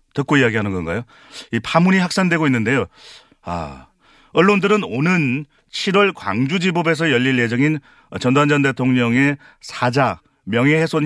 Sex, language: male, Korean